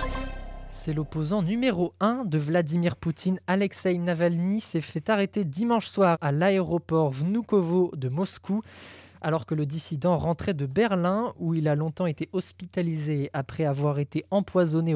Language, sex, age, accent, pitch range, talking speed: French, male, 20-39, French, 145-185 Hz, 145 wpm